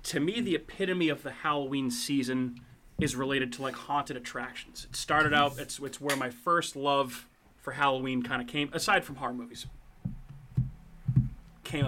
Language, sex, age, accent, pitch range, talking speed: English, male, 30-49, American, 130-155 Hz, 165 wpm